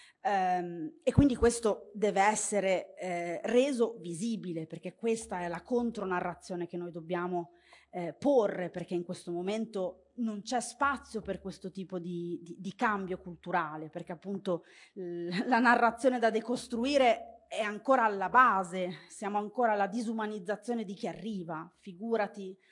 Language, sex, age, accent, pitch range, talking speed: Italian, female, 30-49, native, 175-225 Hz, 130 wpm